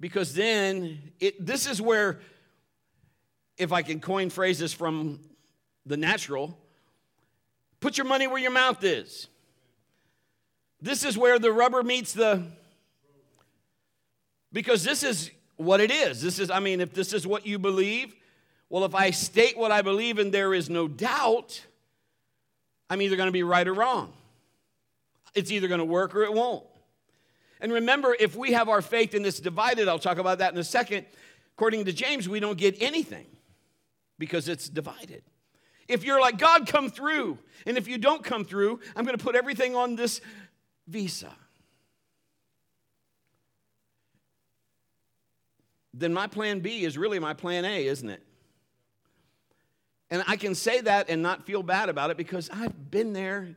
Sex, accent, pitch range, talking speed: male, American, 165-230 Hz, 160 wpm